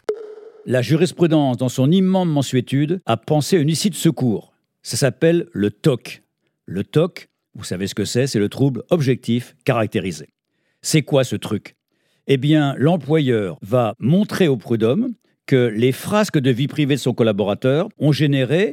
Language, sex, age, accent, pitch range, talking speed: French, male, 50-69, French, 120-160 Hz, 165 wpm